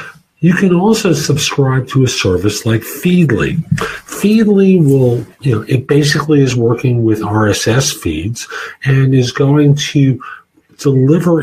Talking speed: 130 wpm